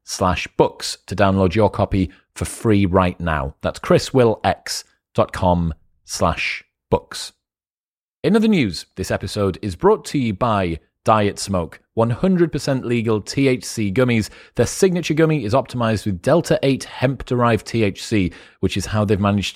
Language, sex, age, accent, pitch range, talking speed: English, male, 30-49, British, 100-125 Hz, 135 wpm